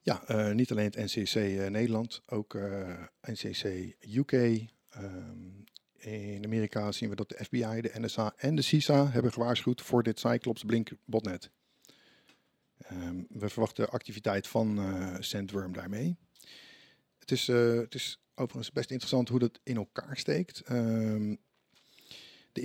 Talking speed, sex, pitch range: 140 wpm, male, 105-125 Hz